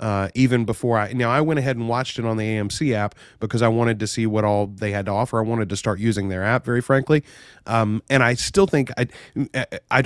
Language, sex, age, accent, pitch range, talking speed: English, male, 30-49, American, 105-120 Hz, 250 wpm